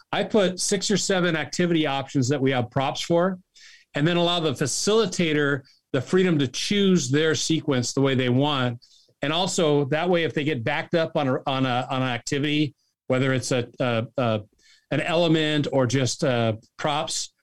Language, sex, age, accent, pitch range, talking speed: English, male, 40-59, American, 130-165 Hz, 185 wpm